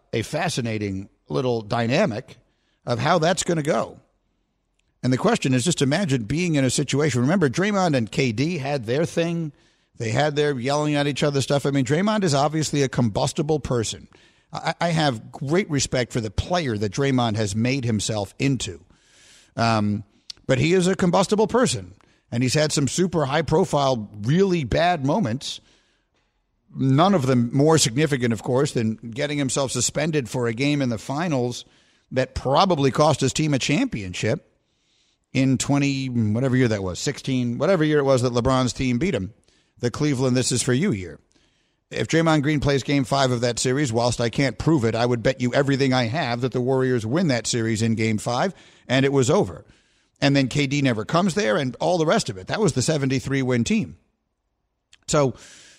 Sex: male